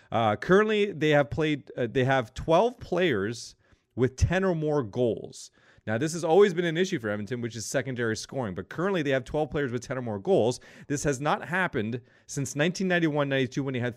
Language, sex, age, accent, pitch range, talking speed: English, male, 30-49, American, 115-145 Hz, 205 wpm